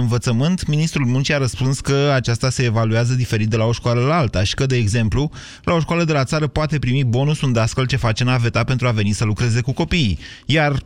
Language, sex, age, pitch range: Romanian, male, 30-49, 110-135 Hz